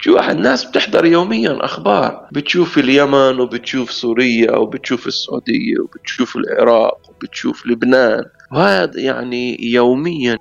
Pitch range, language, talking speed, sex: 120-155 Hz, Arabic, 110 wpm, male